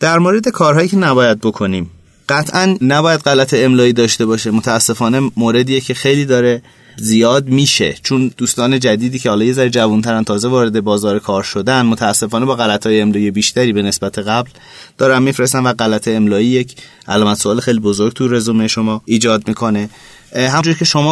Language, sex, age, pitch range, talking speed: Persian, male, 30-49, 115-135 Hz, 165 wpm